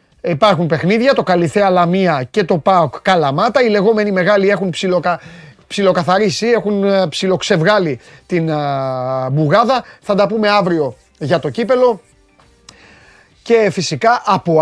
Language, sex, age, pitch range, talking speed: Greek, male, 30-49, 145-210 Hz, 125 wpm